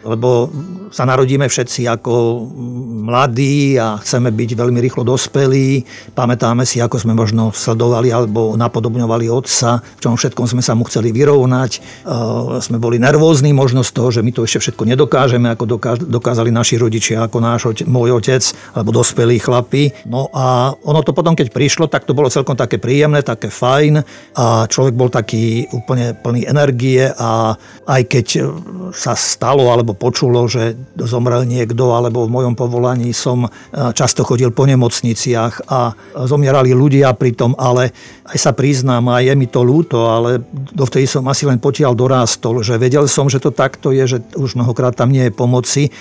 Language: Slovak